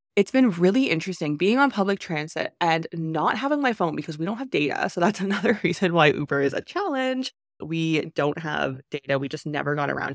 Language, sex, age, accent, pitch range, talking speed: English, female, 20-39, American, 165-225 Hz, 215 wpm